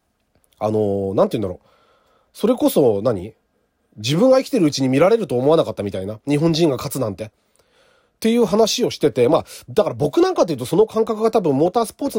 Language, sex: Japanese, male